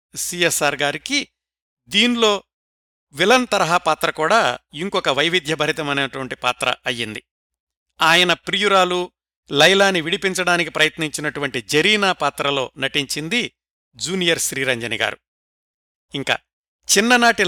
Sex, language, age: male, Telugu, 60-79